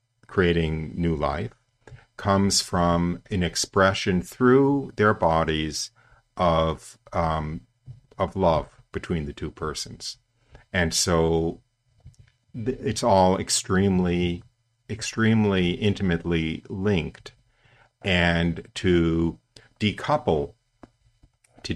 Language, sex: English, male